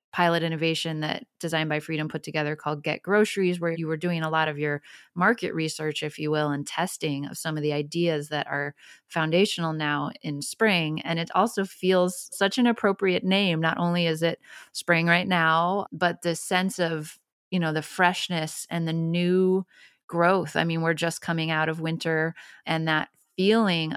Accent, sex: American, female